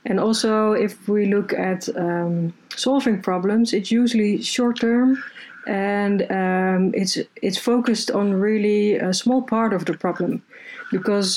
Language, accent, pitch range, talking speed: English, Dutch, 180-215 Hz, 145 wpm